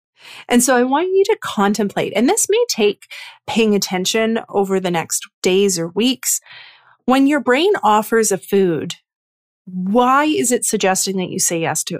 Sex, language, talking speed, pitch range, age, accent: female, English, 170 wpm, 185-240 Hz, 30-49, American